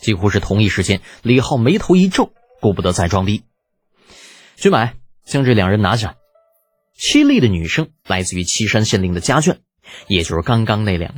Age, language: 20-39, Chinese